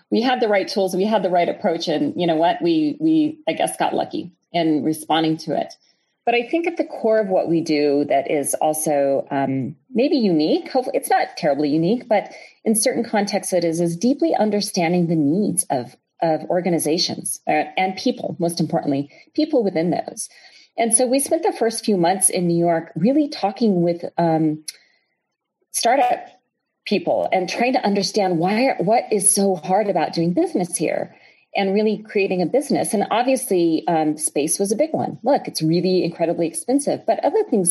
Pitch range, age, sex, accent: 165-230 Hz, 40-59, female, American